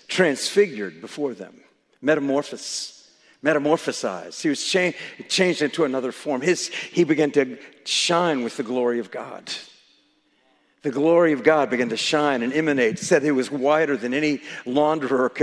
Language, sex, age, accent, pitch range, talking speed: English, male, 50-69, American, 135-170 Hz, 150 wpm